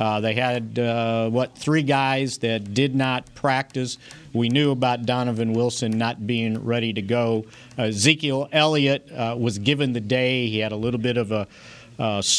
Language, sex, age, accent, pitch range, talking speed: English, male, 50-69, American, 110-125 Hz, 180 wpm